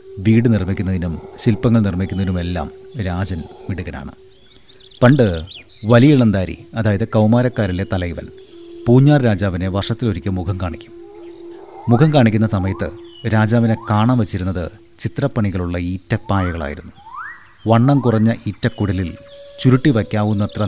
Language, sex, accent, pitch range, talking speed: Malayalam, male, native, 95-120 Hz, 85 wpm